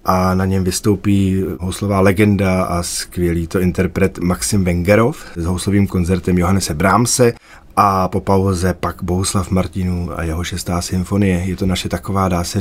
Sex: male